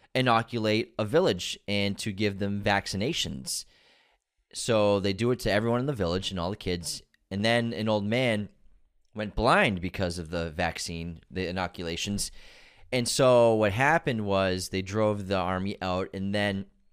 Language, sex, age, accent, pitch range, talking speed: English, male, 30-49, American, 90-115 Hz, 165 wpm